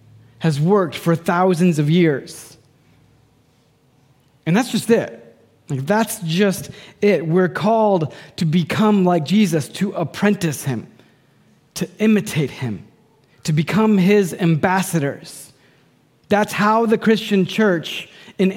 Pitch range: 145-200 Hz